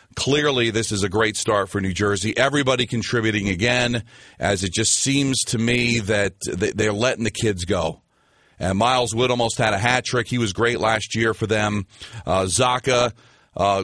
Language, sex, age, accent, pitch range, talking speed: English, male, 40-59, American, 105-130 Hz, 180 wpm